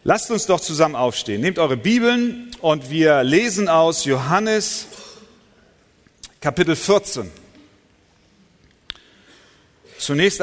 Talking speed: 90 wpm